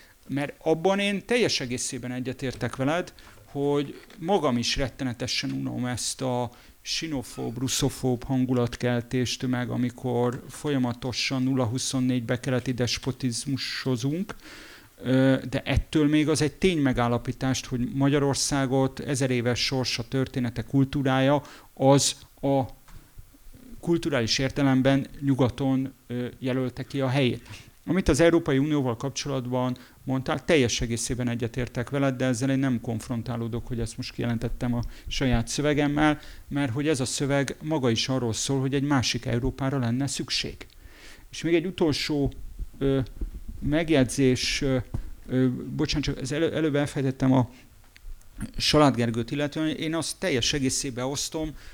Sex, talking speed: male, 120 wpm